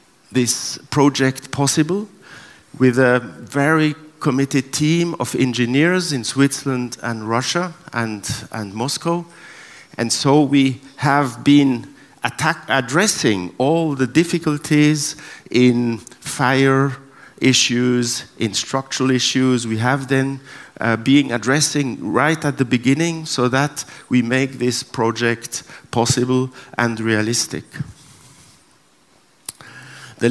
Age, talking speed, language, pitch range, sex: 50-69, 105 wpm, Russian, 125-150 Hz, male